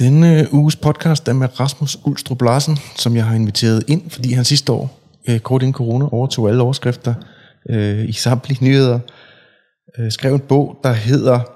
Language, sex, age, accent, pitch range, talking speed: Danish, male, 30-49, native, 105-135 Hz, 160 wpm